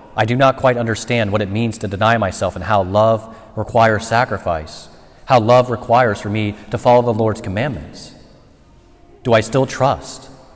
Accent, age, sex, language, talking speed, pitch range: American, 30-49, male, English, 170 wpm, 100-125 Hz